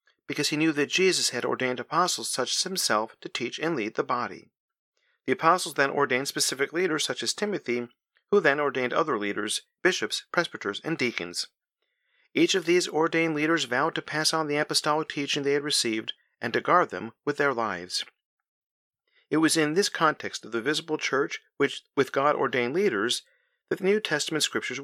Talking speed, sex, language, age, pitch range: 185 wpm, male, English, 50-69, 140-195 Hz